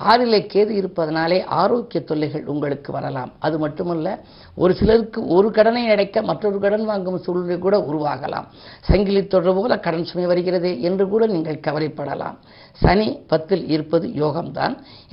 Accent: native